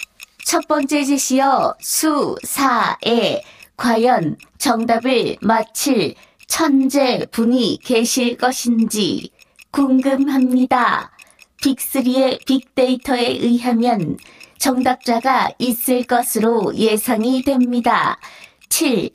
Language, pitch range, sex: Korean, 245-275 Hz, female